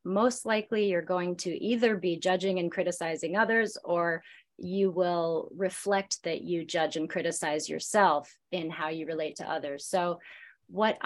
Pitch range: 180-245 Hz